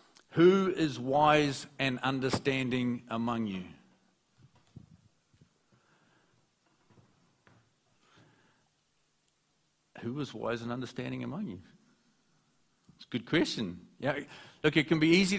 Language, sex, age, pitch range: English, male, 50-69, 115-140 Hz